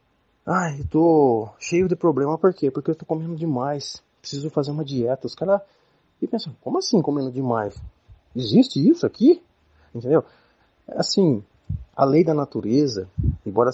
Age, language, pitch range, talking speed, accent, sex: 30-49, Portuguese, 100-160 Hz, 155 wpm, Brazilian, male